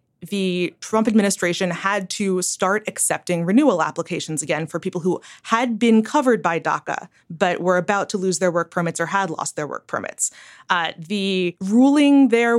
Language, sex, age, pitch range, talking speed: English, female, 20-39, 180-230 Hz, 170 wpm